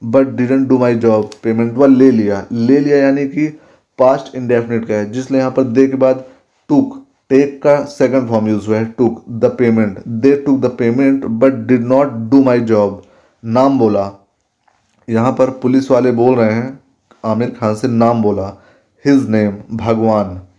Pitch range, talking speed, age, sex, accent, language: 110-135 Hz, 180 wpm, 20-39, male, native, Hindi